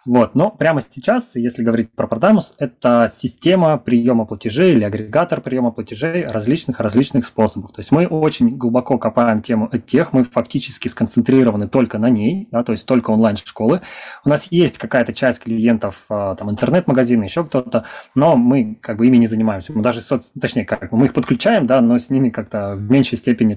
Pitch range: 110-130 Hz